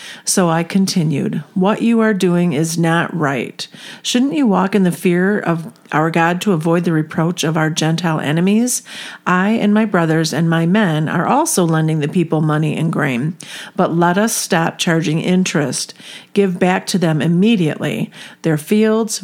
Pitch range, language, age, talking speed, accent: 165-200 Hz, English, 50-69, 170 wpm, American